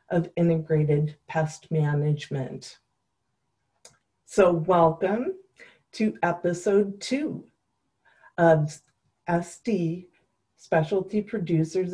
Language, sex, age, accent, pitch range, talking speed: English, female, 40-59, American, 170-205 Hz, 65 wpm